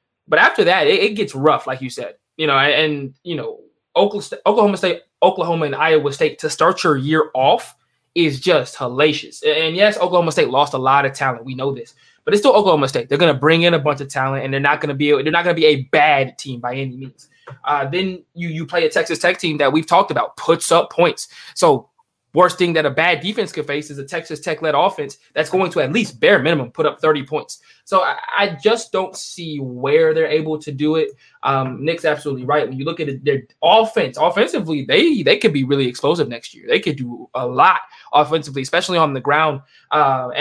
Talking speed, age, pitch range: 230 wpm, 20-39, 140-185 Hz